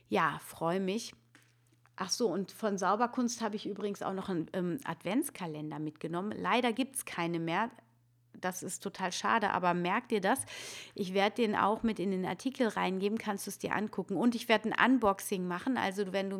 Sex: female